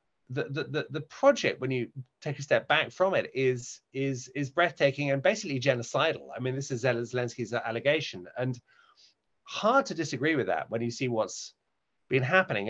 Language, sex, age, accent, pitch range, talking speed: English, male, 30-49, British, 120-145 Hz, 175 wpm